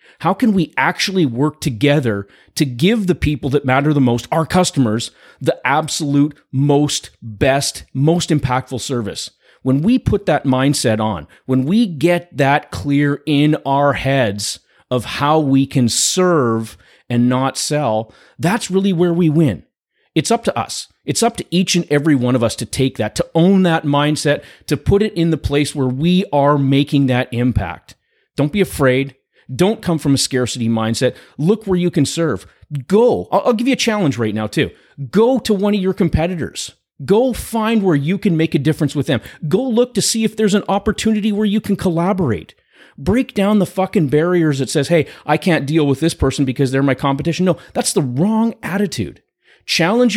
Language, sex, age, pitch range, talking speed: English, male, 30-49, 135-180 Hz, 190 wpm